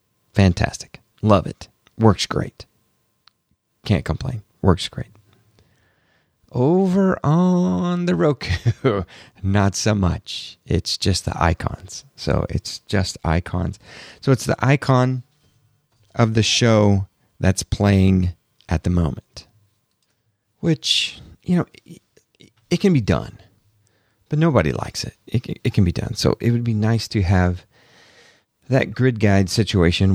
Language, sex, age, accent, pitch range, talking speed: English, male, 40-59, American, 90-120 Hz, 125 wpm